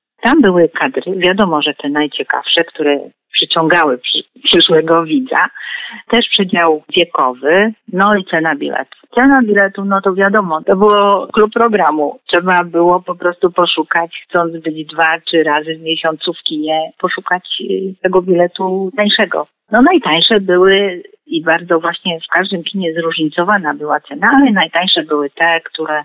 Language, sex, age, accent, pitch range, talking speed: Polish, female, 40-59, native, 160-215 Hz, 145 wpm